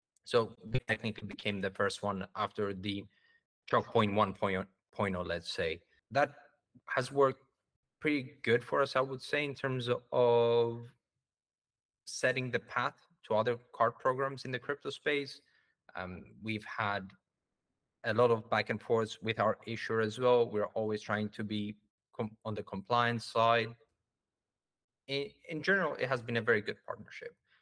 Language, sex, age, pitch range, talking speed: English, male, 30-49, 105-130 Hz, 155 wpm